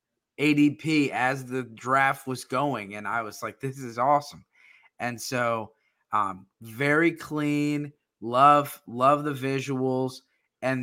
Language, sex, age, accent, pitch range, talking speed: English, male, 20-39, American, 115-145 Hz, 125 wpm